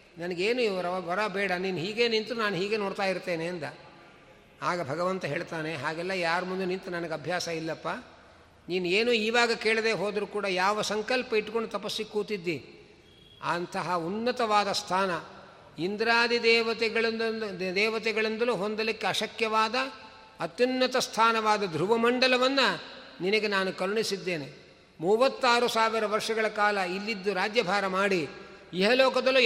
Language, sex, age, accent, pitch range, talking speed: Kannada, male, 50-69, native, 180-230 Hz, 110 wpm